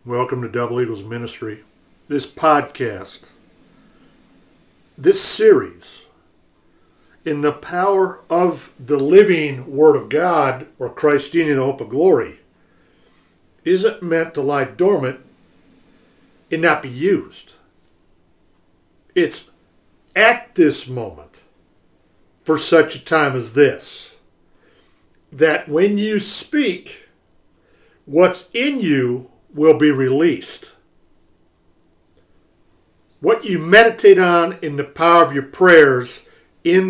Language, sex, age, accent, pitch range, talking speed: English, male, 60-79, American, 140-200 Hz, 105 wpm